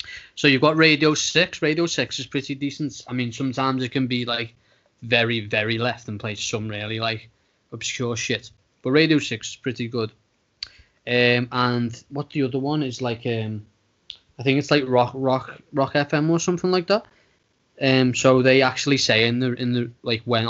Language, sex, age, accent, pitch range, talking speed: English, male, 10-29, British, 115-135 Hz, 190 wpm